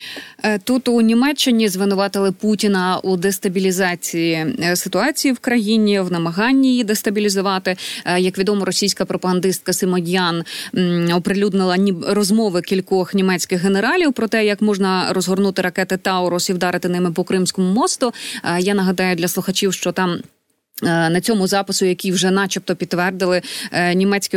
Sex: female